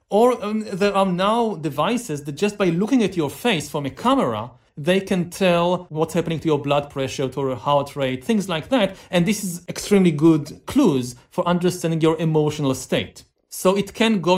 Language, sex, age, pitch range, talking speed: English, male, 40-59, 150-200 Hz, 195 wpm